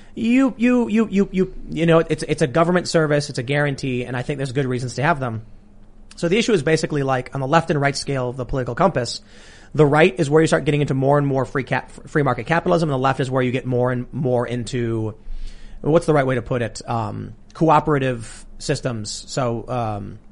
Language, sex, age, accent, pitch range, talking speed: English, male, 30-49, American, 120-160 Hz, 235 wpm